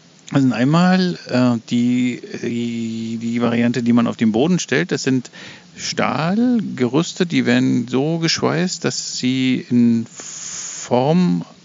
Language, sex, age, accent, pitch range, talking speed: German, male, 50-69, German, 125-185 Hz, 120 wpm